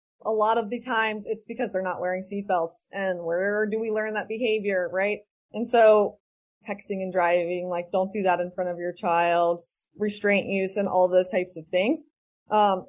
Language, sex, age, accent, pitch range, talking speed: English, female, 20-39, American, 190-235 Hz, 195 wpm